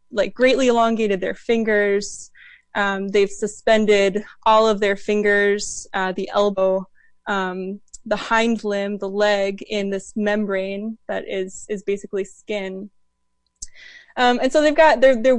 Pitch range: 200-235 Hz